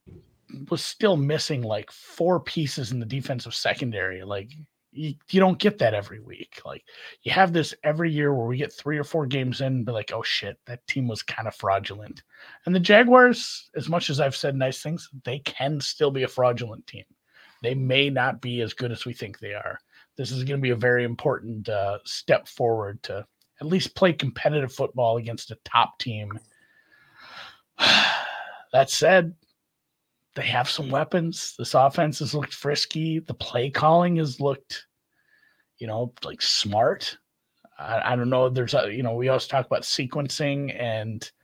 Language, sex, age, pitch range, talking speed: English, male, 30-49, 120-155 Hz, 180 wpm